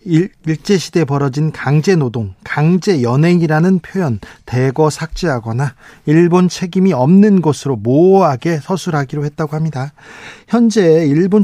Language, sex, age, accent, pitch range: Korean, male, 40-59, native, 140-190 Hz